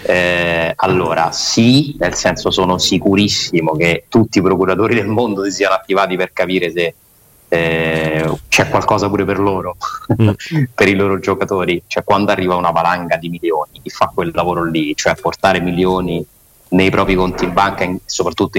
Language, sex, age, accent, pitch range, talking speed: Italian, male, 30-49, native, 85-100 Hz, 165 wpm